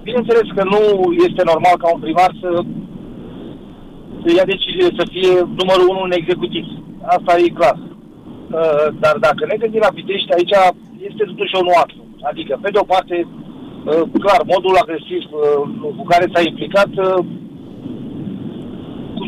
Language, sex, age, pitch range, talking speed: Romanian, male, 50-69, 160-210 Hz, 135 wpm